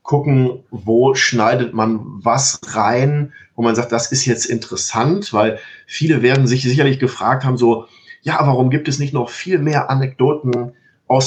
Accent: German